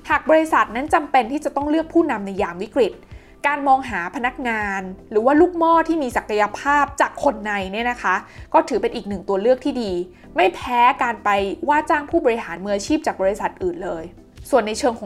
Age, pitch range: 20-39, 200-285 Hz